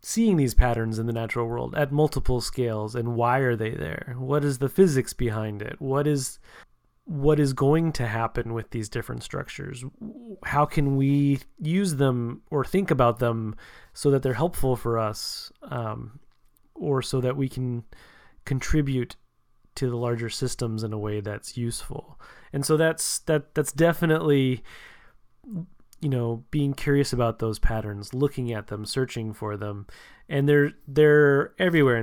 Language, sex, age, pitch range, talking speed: English, male, 30-49, 115-145 Hz, 160 wpm